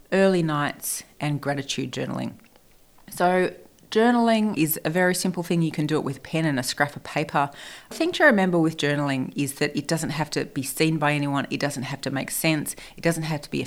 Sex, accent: female, Australian